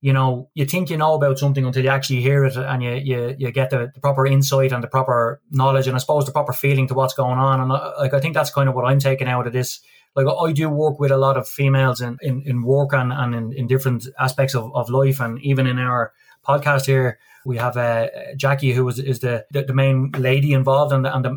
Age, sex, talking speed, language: 20-39, male, 260 wpm, English